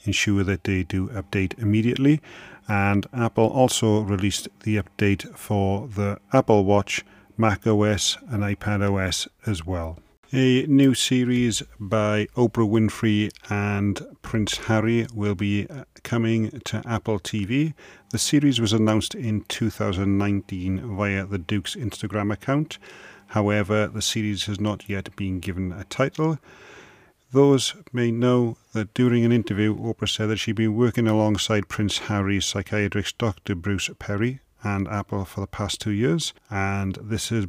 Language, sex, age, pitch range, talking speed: English, male, 40-59, 100-115 Hz, 140 wpm